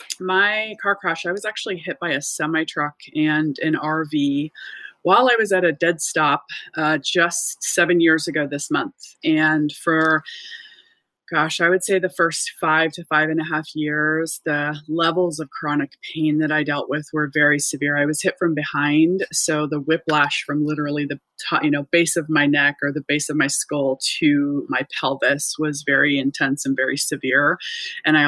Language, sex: English, female